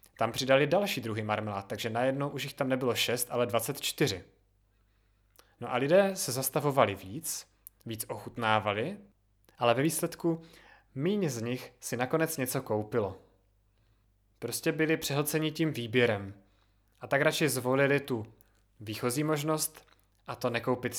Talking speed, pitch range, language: 135 wpm, 105-135 Hz, Czech